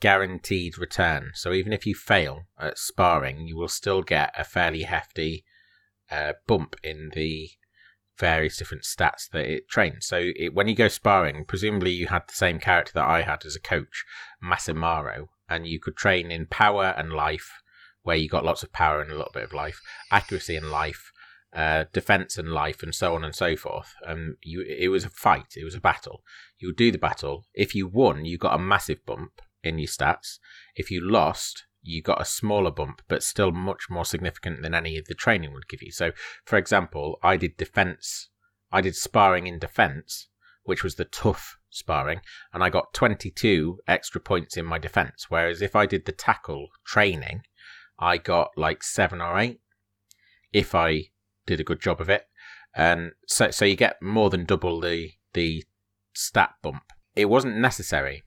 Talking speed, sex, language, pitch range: 195 wpm, male, English, 80-100 Hz